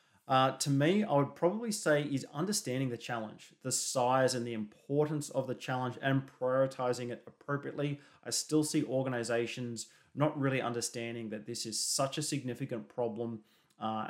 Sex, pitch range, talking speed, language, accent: male, 120-140 Hz, 160 wpm, English, Australian